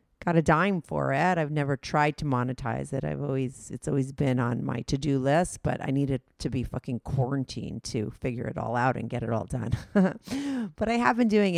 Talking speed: 225 wpm